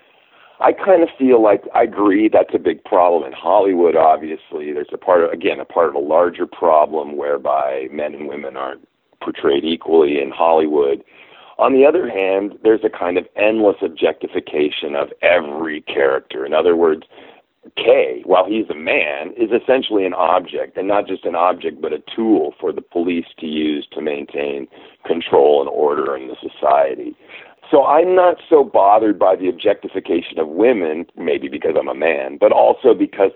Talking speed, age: 175 wpm, 50-69